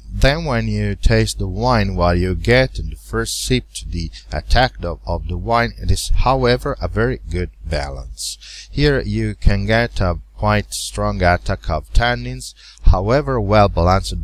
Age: 50-69